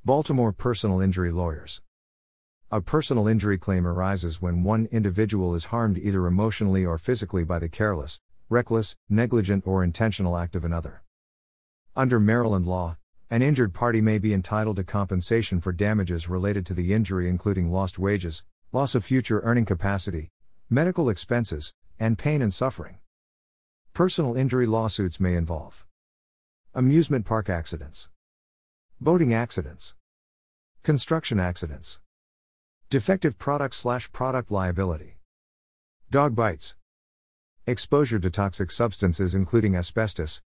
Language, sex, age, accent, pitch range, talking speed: English, male, 50-69, American, 85-115 Hz, 125 wpm